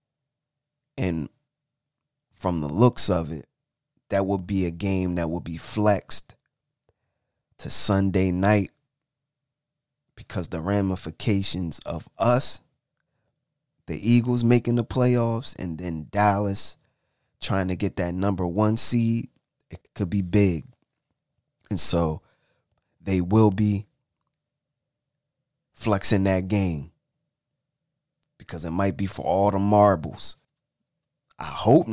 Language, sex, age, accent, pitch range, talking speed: English, male, 20-39, American, 95-130 Hz, 115 wpm